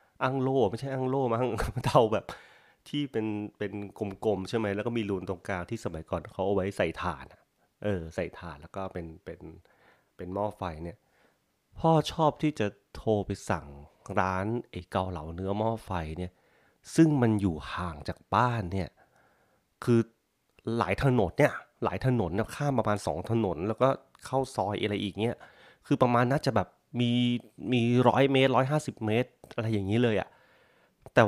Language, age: Thai, 30-49